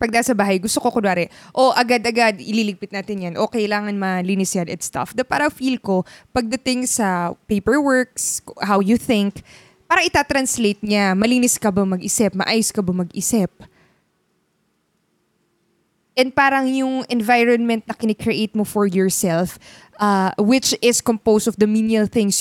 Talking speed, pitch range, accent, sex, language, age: 145 wpm, 200-250 Hz, native, female, Filipino, 20-39